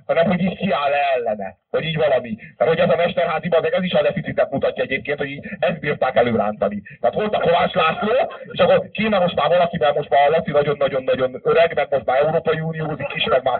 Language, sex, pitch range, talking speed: Hungarian, male, 145-210 Hz, 220 wpm